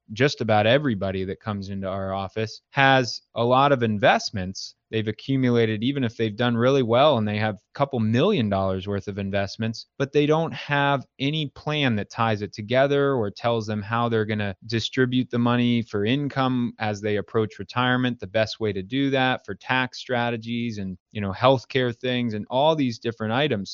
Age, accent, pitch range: 20-39, American, 110-130 Hz